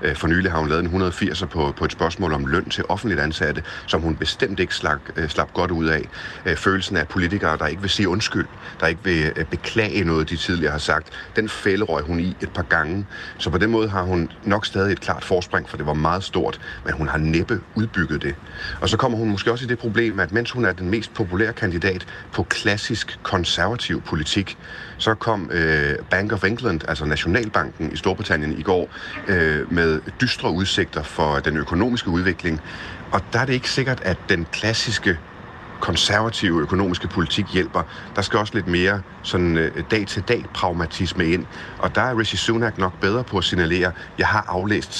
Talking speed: 195 wpm